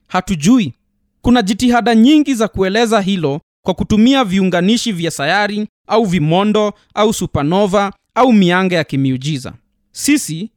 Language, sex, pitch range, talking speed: Swahili, male, 170-230 Hz, 120 wpm